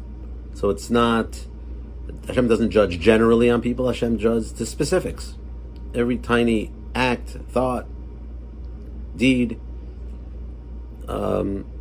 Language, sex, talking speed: English, male, 95 wpm